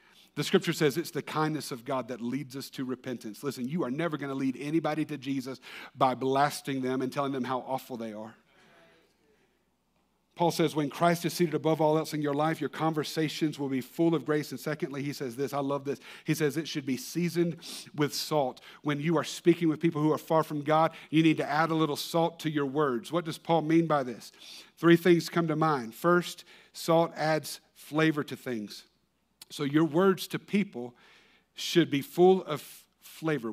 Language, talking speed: English, 210 wpm